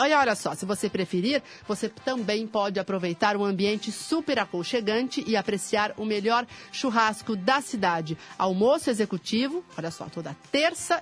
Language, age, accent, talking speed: Portuguese, 40-59, Brazilian, 145 wpm